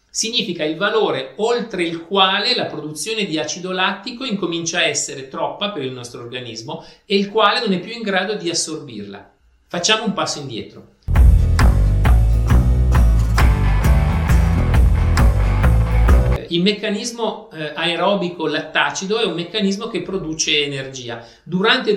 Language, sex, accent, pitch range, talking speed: Italian, male, native, 135-195 Hz, 120 wpm